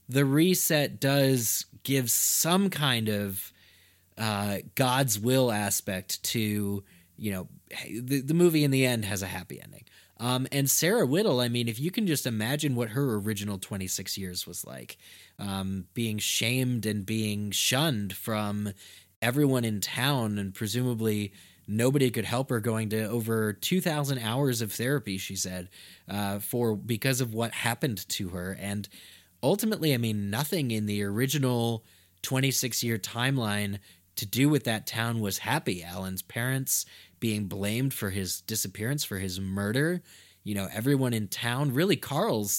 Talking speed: 155 wpm